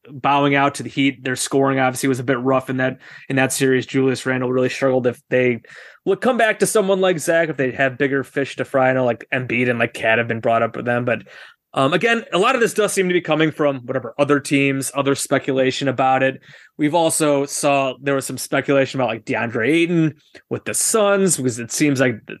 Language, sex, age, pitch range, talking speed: English, male, 20-39, 130-150 Hz, 240 wpm